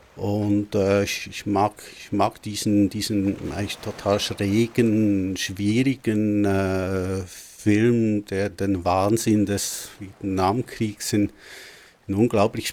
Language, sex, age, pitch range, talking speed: German, male, 50-69, 100-115 Hz, 110 wpm